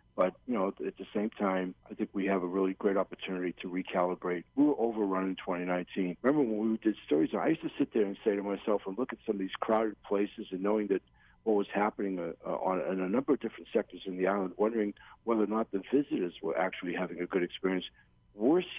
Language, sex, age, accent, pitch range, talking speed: English, male, 60-79, American, 95-110 Hz, 235 wpm